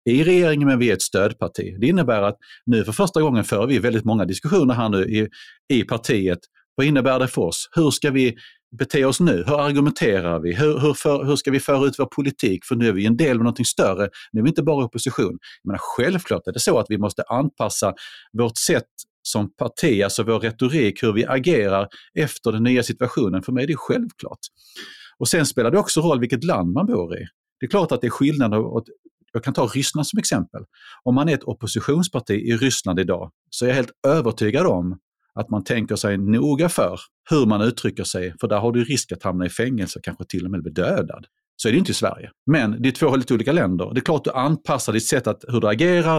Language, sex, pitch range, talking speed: Swedish, male, 110-145 Hz, 235 wpm